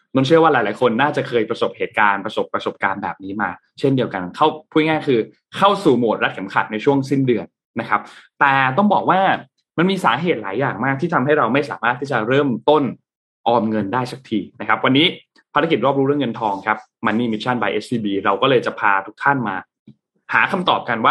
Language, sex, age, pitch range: Thai, male, 20-39, 110-150 Hz